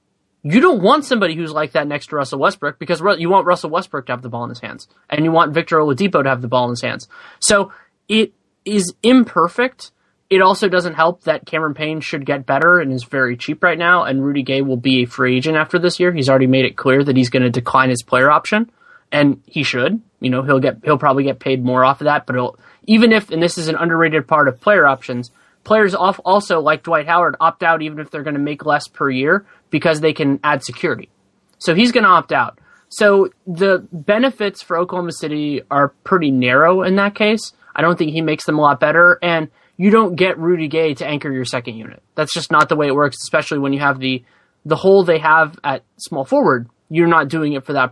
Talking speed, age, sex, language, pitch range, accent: 240 wpm, 20-39, male, English, 135-180 Hz, American